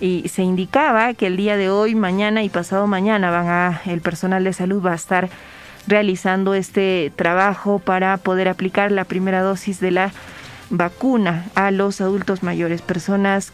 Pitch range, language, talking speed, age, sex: 180-200 Hz, Spanish, 170 wpm, 30-49, female